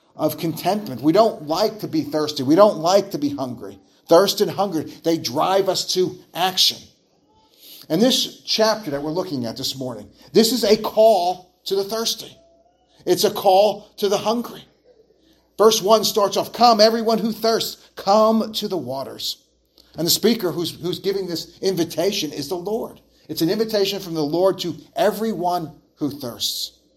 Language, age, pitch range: English, 40-59, 165-215 Hz